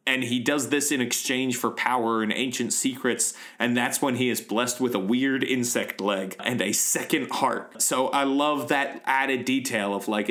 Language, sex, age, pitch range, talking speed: English, male, 30-49, 115-140 Hz, 200 wpm